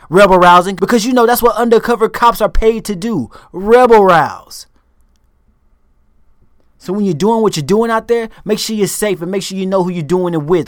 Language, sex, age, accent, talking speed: English, male, 30-49, American, 215 wpm